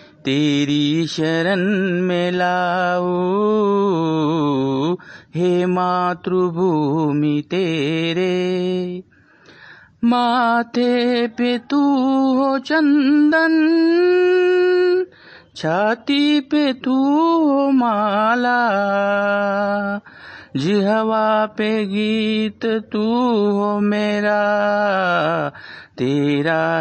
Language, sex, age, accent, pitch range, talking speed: Marathi, male, 50-69, native, 165-210 Hz, 55 wpm